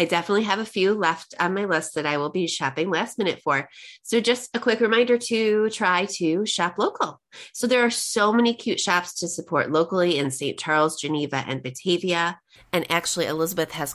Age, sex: 30-49, female